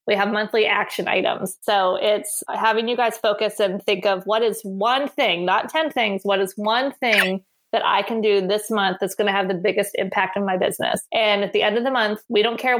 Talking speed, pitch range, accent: 240 wpm, 195-220 Hz, American